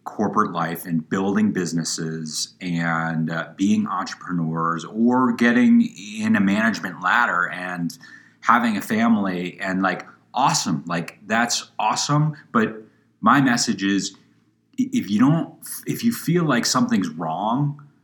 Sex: male